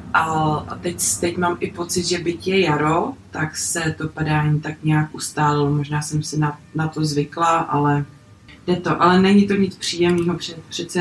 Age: 20-39